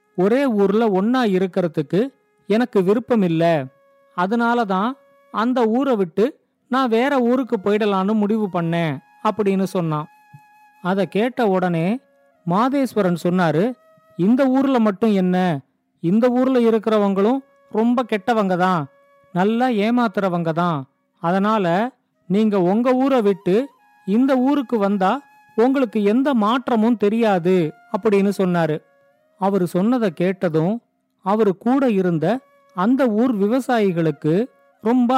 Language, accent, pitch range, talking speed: Tamil, native, 185-245 Hz, 100 wpm